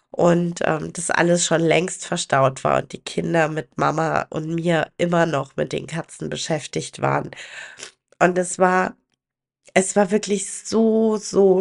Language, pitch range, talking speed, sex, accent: German, 185-225 Hz, 155 wpm, female, German